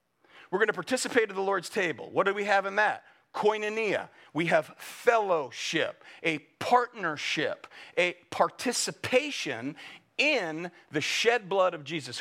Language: English